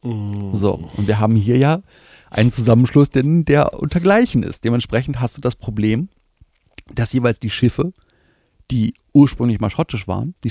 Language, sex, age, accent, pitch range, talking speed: German, male, 40-59, German, 105-135 Hz, 150 wpm